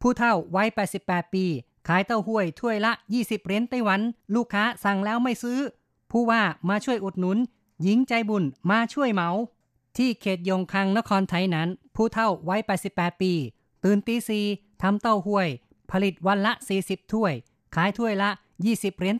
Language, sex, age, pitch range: Thai, female, 20-39, 175-215 Hz